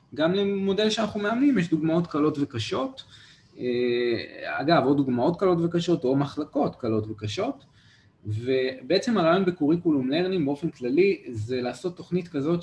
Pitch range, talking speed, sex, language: 115-155 Hz, 130 wpm, male, Hebrew